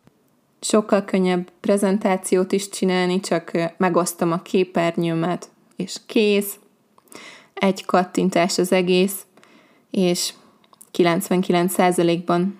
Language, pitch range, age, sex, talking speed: Hungarian, 185-225 Hz, 20-39, female, 80 wpm